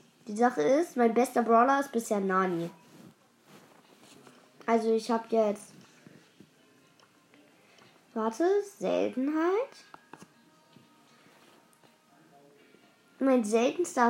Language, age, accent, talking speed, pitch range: German, 20-39, German, 70 wpm, 210-255 Hz